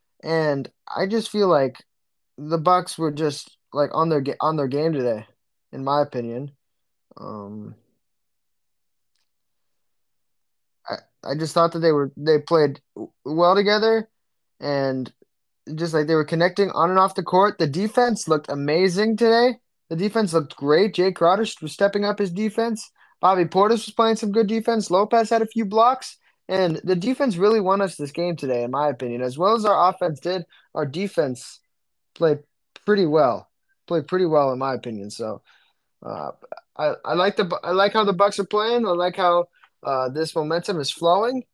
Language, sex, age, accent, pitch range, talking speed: English, male, 20-39, American, 145-200 Hz, 175 wpm